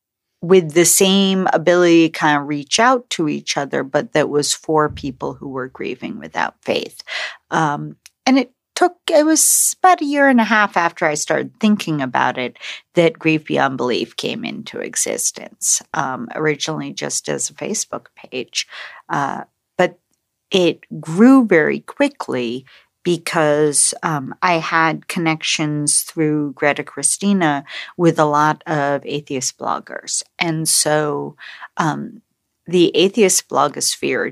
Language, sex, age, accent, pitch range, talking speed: English, female, 40-59, American, 145-210 Hz, 140 wpm